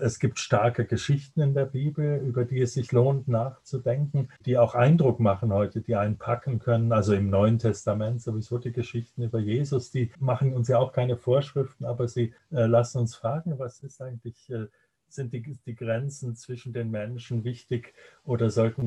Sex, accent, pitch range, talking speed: male, German, 110-130 Hz, 185 wpm